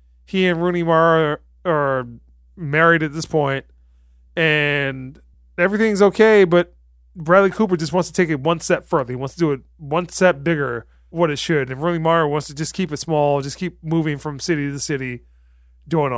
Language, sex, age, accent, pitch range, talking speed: English, male, 30-49, American, 115-180 Hz, 190 wpm